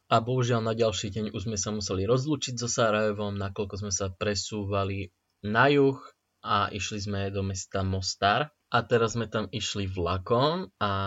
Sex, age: male, 20-39